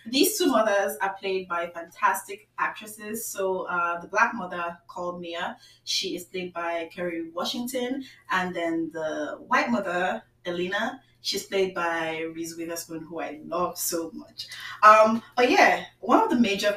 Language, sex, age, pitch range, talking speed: English, female, 20-39, 165-190 Hz, 155 wpm